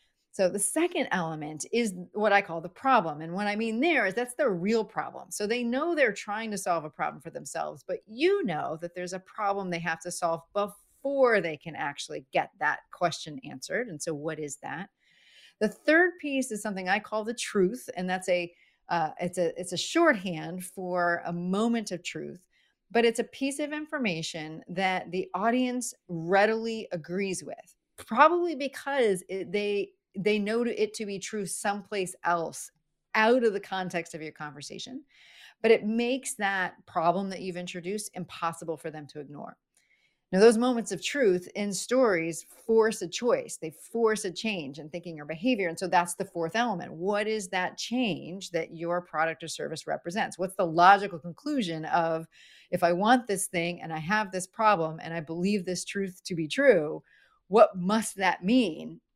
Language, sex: English, female